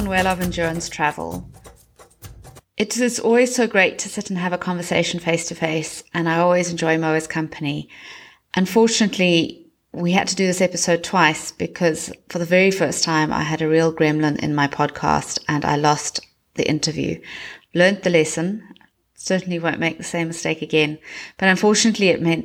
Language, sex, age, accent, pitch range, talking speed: English, female, 30-49, British, 155-185 Hz, 175 wpm